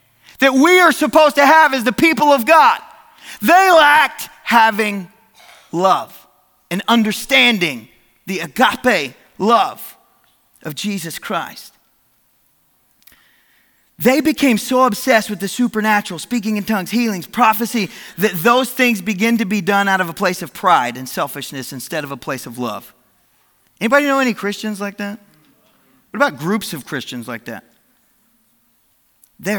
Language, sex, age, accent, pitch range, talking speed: English, male, 30-49, American, 195-275 Hz, 140 wpm